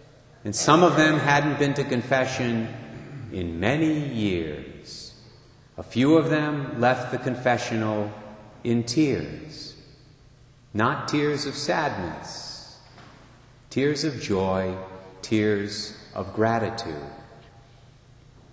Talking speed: 95 wpm